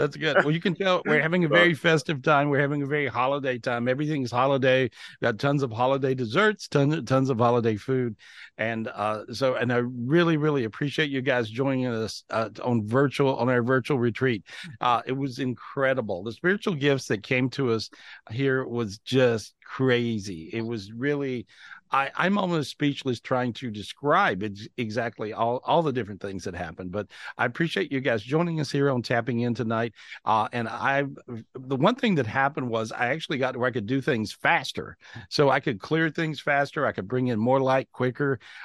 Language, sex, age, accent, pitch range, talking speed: English, male, 50-69, American, 120-145 Hz, 195 wpm